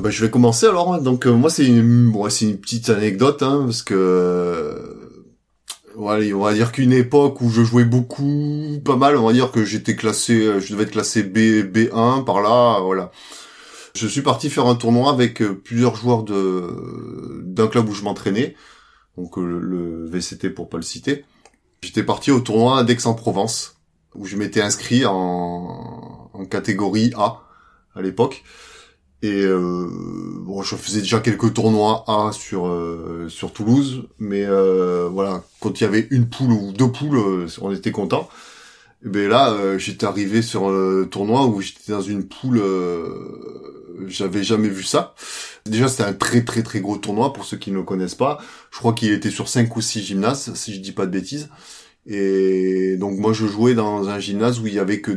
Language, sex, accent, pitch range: French, male, French, 95-120 Hz